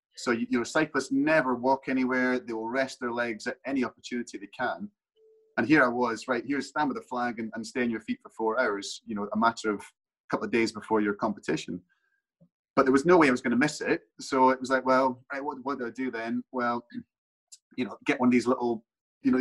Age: 30-49